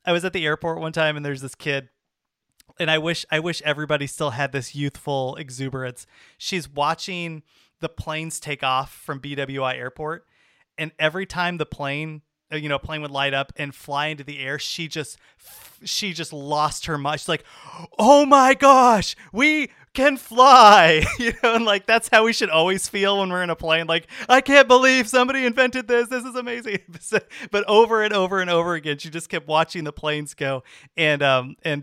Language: English